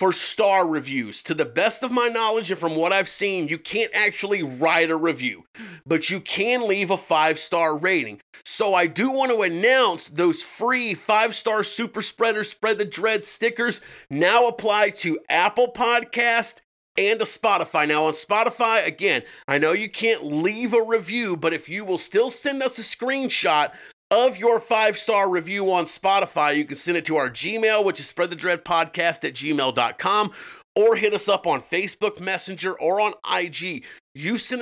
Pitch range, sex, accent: 170-225 Hz, male, American